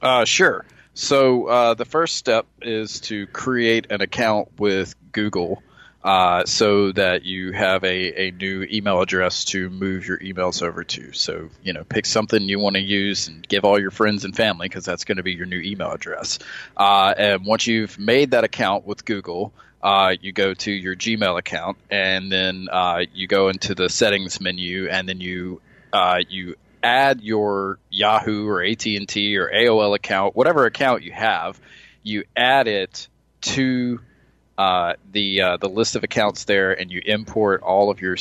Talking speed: 180 wpm